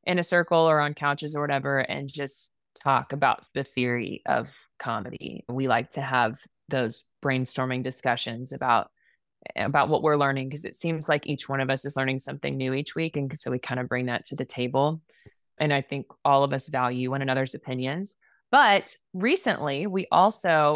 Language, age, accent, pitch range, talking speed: English, 20-39, American, 135-165 Hz, 190 wpm